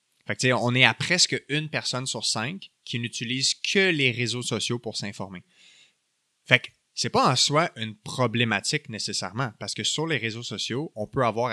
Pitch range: 110-135 Hz